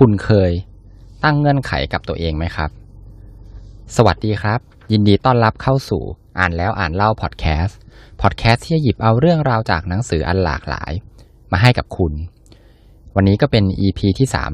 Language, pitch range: Thai, 85-110 Hz